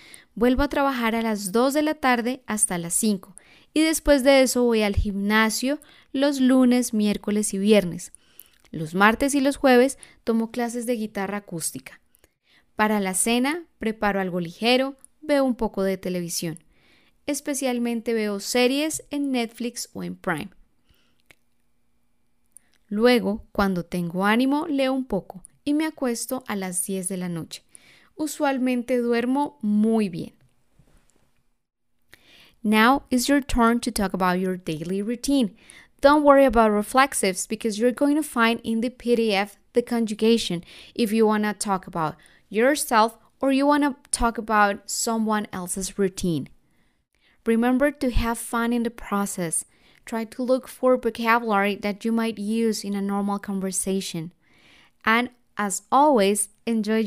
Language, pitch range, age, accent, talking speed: Spanish, 200-255 Hz, 10-29, Colombian, 145 wpm